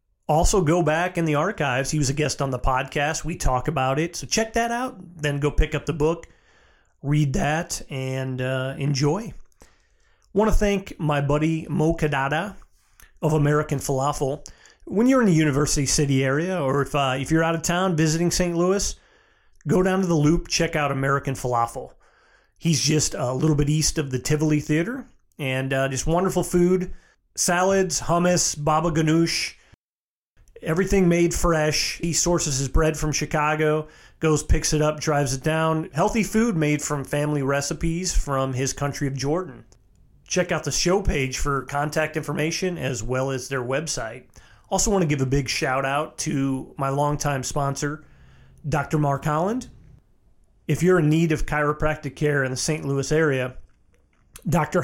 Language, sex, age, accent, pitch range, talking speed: English, male, 30-49, American, 140-170 Hz, 170 wpm